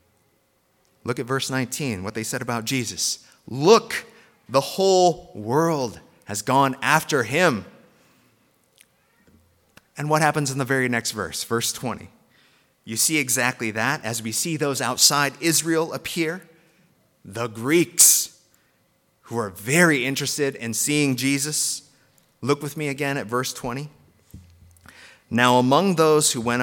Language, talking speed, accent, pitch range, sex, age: English, 135 wpm, American, 115-145 Hz, male, 30-49